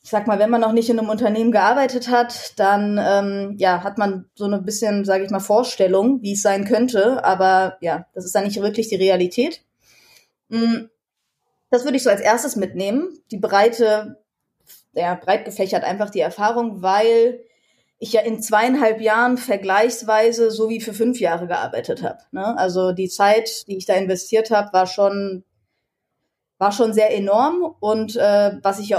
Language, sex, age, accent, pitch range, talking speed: German, female, 20-39, German, 200-245 Hz, 180 wpm